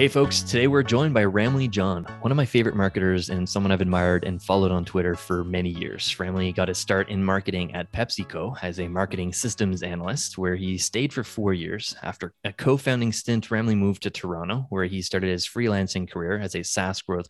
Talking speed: 210 wpm